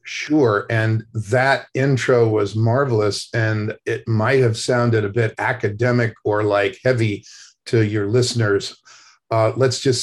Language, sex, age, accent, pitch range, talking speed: English, male, 50-69, American, 110-125 Hz, 140 wpm